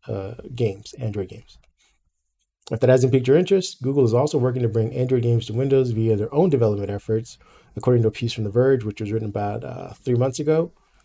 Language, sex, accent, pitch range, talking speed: English, male, American, 105-130 Hz, 215 wpm